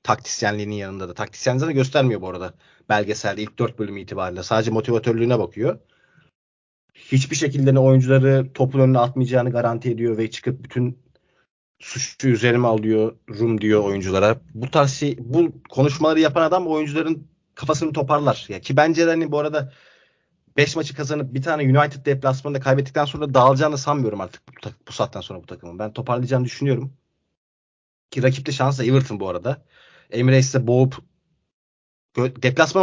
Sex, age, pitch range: male, 30-49, 120-155 Hz